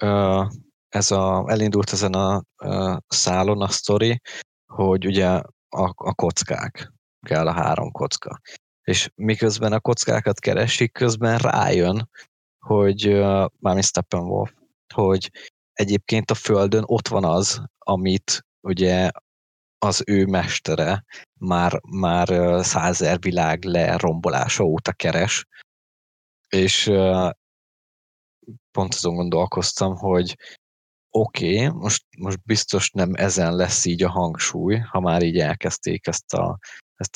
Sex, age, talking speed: male, 20-39, 110 wpm